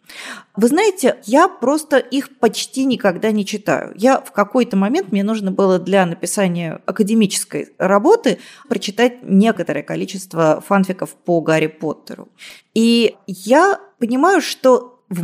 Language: Russian